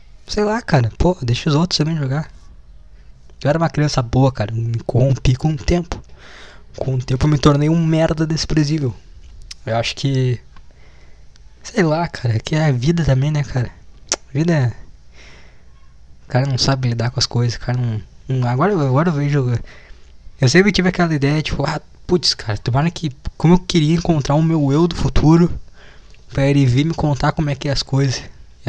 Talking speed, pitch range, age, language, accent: 195 wpm, 100-145 Hz, 20-39, Portuguese, Brazilian